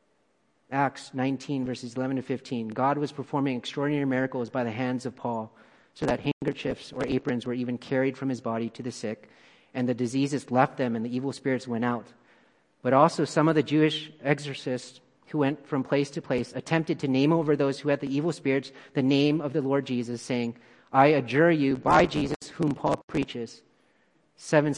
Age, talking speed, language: 40-59, 195 wpm, English